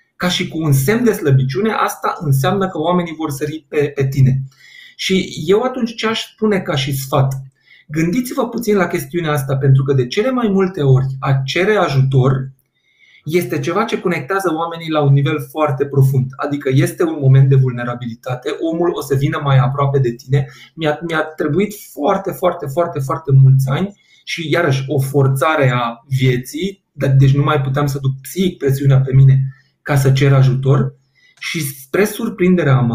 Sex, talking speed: male, 175 wpm